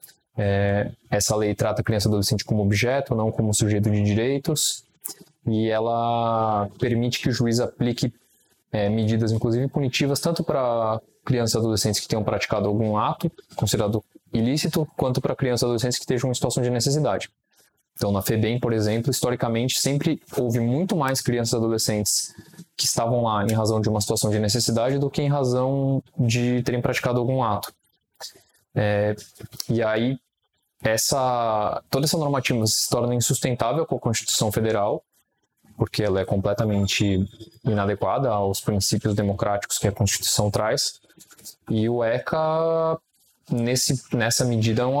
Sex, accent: male, Brazilian